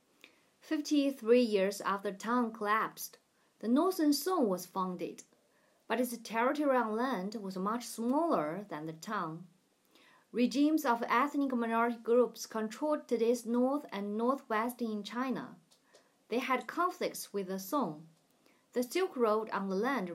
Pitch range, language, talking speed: 205-265 Hz, English, 135 wpm